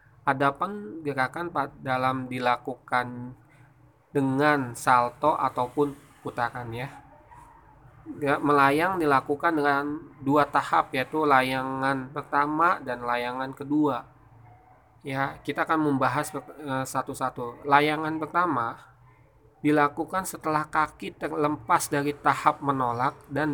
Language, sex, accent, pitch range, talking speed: Indonesian, male, native, 130-150 Hz, 90 wpm